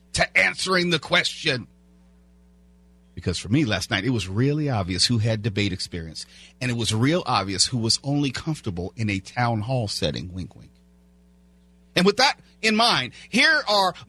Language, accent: English, American